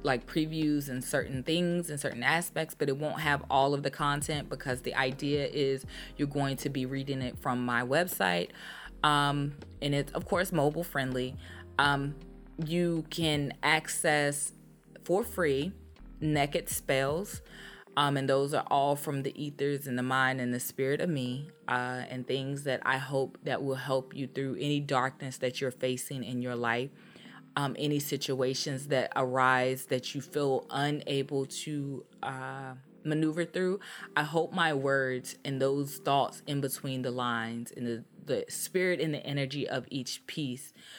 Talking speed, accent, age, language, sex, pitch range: 165 wpm, American, 20-39, English, female, 130-150 Hz